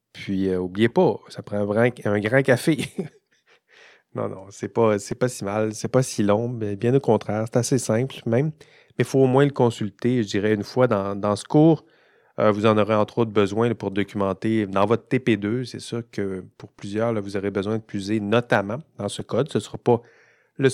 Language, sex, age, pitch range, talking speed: French, male, 30-49, 105-135 Hz, 230 wpm